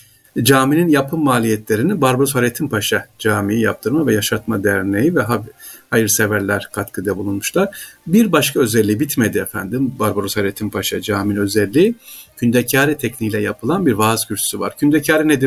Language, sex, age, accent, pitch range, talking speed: Turkish, male, 50-69, native, 105-130 Hz, 130 wpm